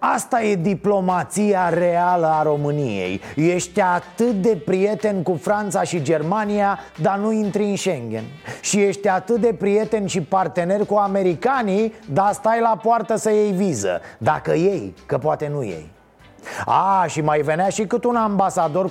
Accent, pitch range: native, 160-200 Hz